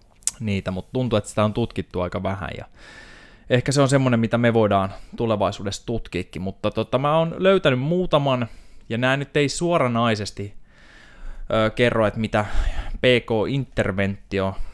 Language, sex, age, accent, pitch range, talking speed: Finnish, male, 20-39, native, 95-120 Hz, 145 wpm